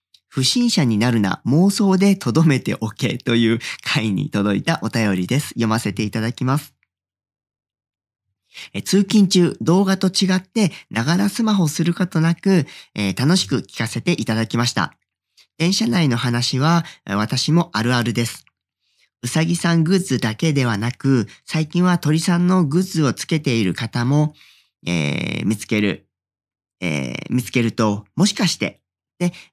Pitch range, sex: 105-160 Hz, male